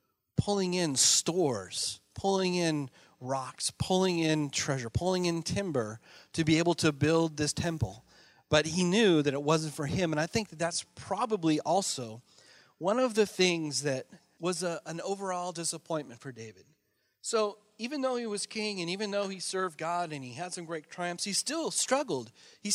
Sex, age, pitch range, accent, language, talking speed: male, 30-49, 145-190 Hz, American, English, 175 wpm